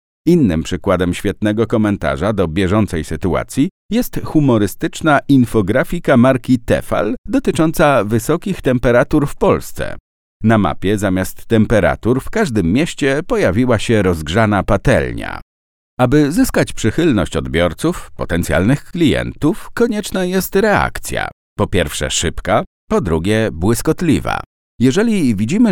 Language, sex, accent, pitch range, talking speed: Polish, male, native, 95-140 Hz, 105 wpm